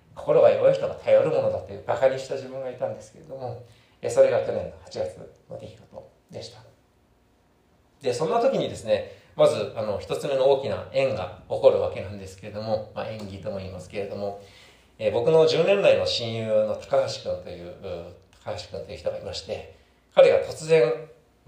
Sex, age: male, 40-59